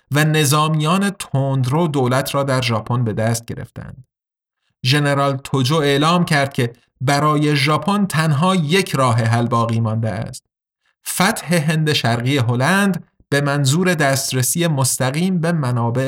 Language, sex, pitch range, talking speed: Persian, male, 125-170 Hz, 125 wpm